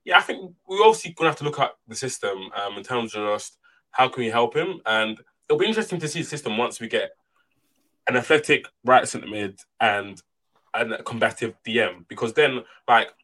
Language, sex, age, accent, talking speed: English, male, 20-39, British, 205 wpm